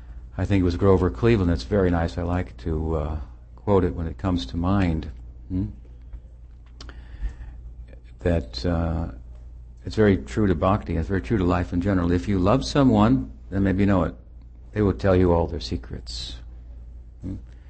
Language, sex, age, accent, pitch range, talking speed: English, male, 60-79, American, 65-95 Hz, 175 wpm